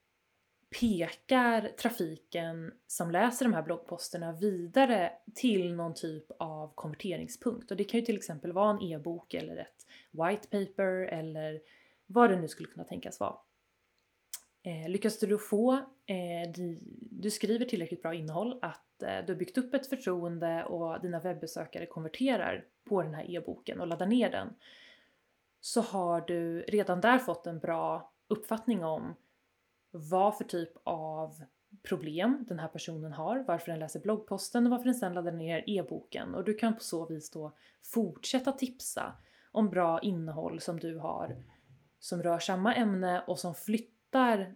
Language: Swedish